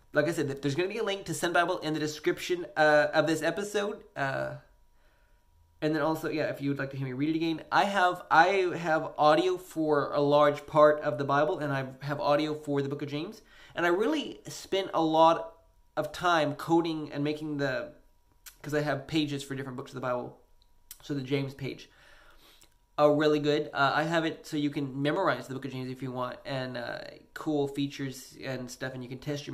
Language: English